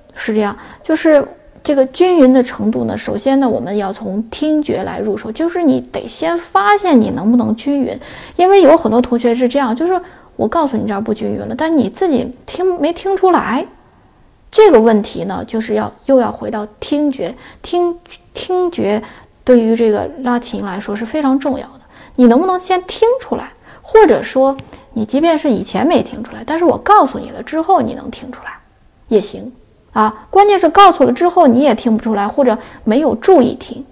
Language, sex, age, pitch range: Chinese, female, 20-39, 220-295 Hz